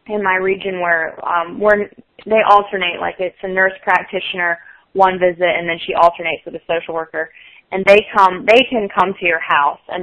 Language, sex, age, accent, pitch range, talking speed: English, female, 20-39, American, 180-215 Hz, 195 wpm